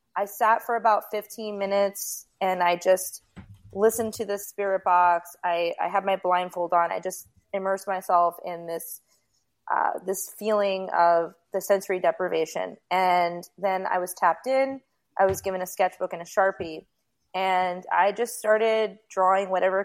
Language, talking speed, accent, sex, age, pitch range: English, 160 wpm, American, female, 20-39, 175-200 Hz